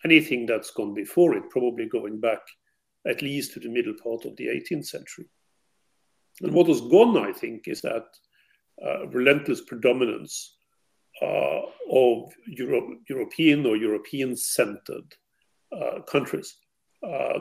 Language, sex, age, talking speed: English, male, 50-69, 125 wpm